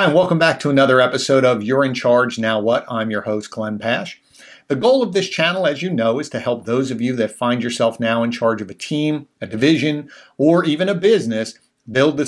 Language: English